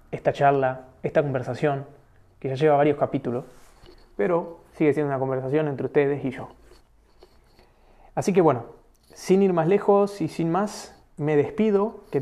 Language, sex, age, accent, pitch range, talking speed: Spanish, male, 20-39, Argentinian, 130-155 Hz, 150 wpm